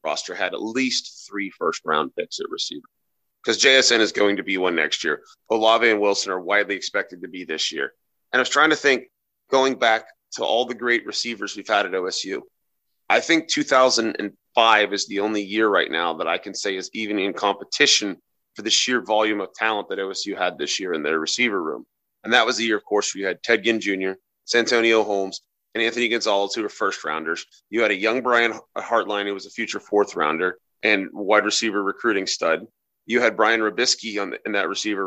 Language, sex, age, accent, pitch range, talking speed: English, male, 30-49, American, 100-125 Hz, 205 wpm